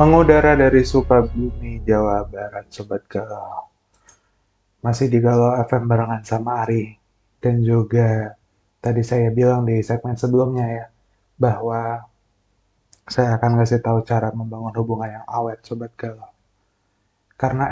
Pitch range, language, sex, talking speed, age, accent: 105-120 Hz, Indonesian, male, 125 wpm, 20-39, native